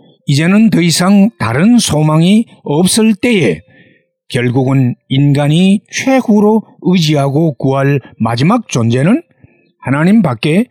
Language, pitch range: Korean, 125-190 Hz